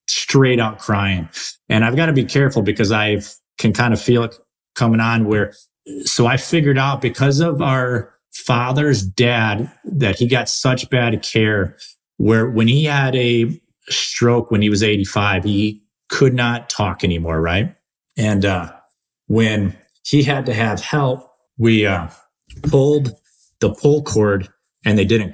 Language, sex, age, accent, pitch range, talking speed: English, male, 30-49, American, 105-130 Hz, 160 wpm